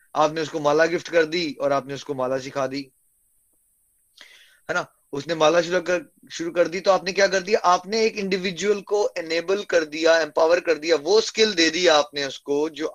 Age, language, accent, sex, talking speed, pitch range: 20-39, Hindi, native, male, 200 wpm, 145-195 Hz